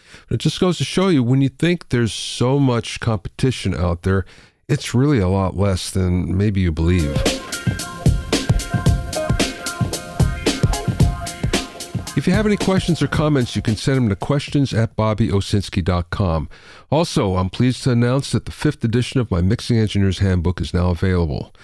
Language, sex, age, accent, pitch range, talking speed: English, male, 50-69, American, 95-130 Hz, 155 wpm